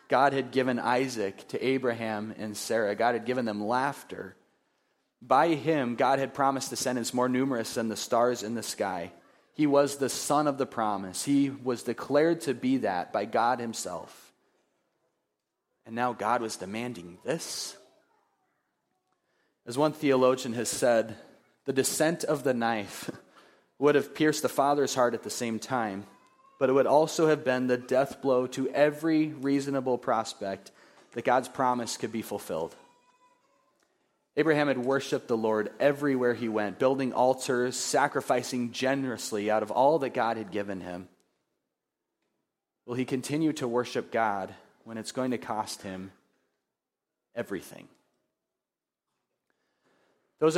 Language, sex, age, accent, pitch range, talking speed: English, male, 30-49, American, 115-140 Hz, 145 wpm